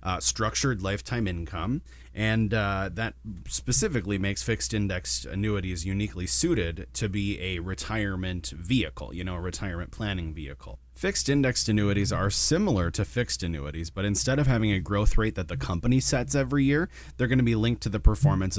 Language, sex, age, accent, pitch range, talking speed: English, male, 30-49, American, 85-110 Hz, 175 wpm